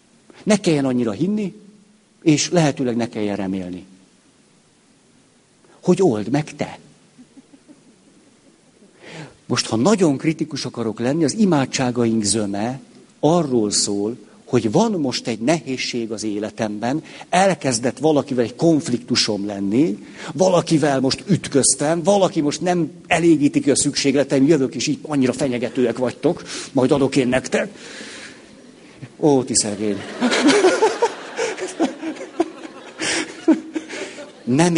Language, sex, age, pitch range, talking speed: Hungarian, male, 60-79, 115-170 Hz, 100 wpm